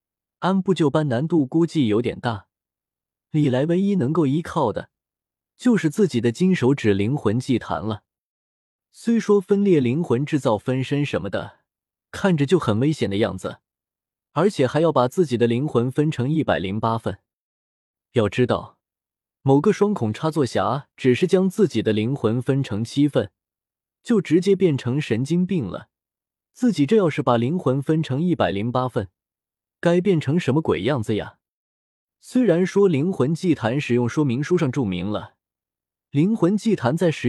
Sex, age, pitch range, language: male, 20-39, 115-170 Hz, Chinese